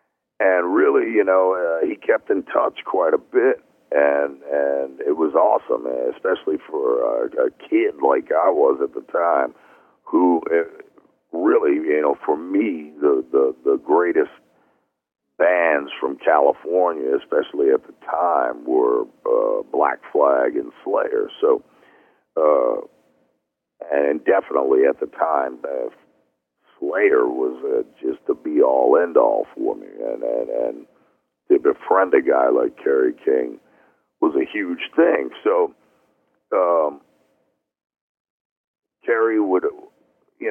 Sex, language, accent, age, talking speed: male, English, American, 50-69, 130 wpm